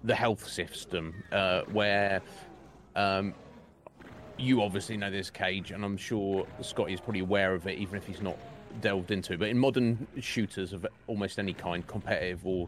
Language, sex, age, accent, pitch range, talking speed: English, male, 30-49, British, 90-110 Hz, 175 wpm